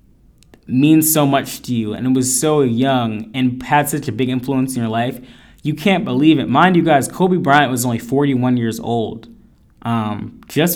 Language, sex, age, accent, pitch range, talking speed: English, male, 20-39, American, 120-145 Hz, 195 wpm